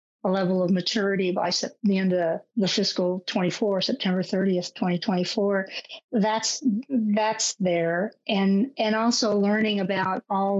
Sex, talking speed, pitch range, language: female, 145 wpm, 185-215 Hz, English